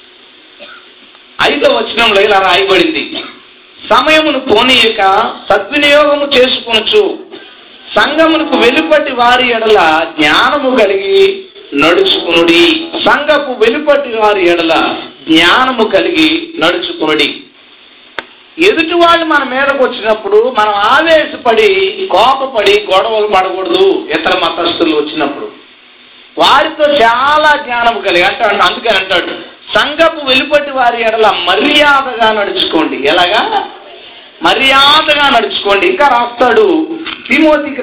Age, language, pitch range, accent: 40-59, Telugu, 220-320 Hz, native